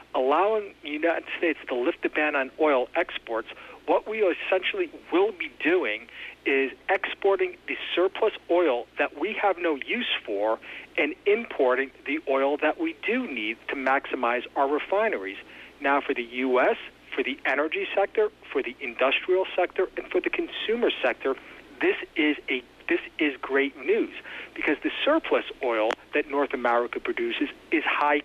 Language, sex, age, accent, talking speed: English, male, 40-59, American, 155 wpm